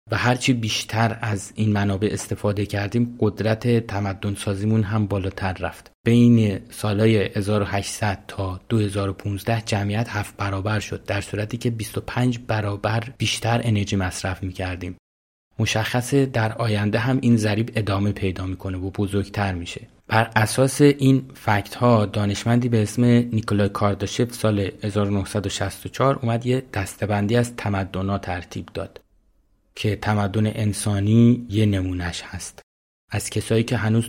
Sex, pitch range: male, 100-115 Hz